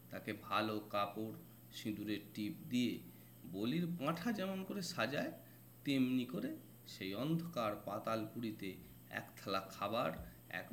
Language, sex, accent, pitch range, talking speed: Bengali, male, native, 95-160 Hz, 115 wpm